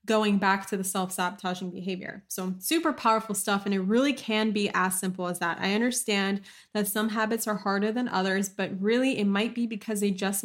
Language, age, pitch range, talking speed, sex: English, 20-39, 195-225 Hz, 205 wpm, female